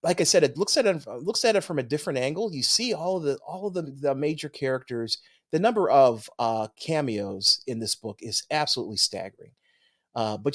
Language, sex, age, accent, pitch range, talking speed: English, male, 30-49, American, 110-135 Hz, 220 wpm